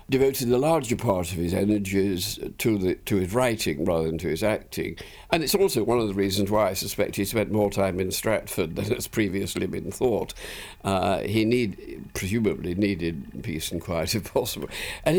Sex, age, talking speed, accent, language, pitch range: male, 60-79, 185 wpm, British, English, 95-120 Hz